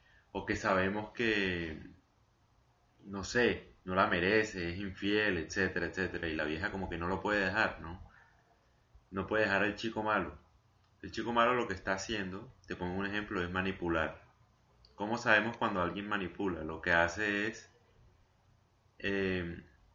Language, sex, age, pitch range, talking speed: Spanish, male, 30-49, 90-110 Hz, 155 wpm